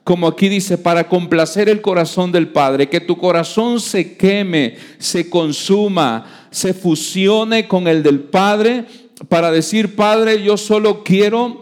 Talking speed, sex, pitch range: 145 wpm, male, 170-215 Hz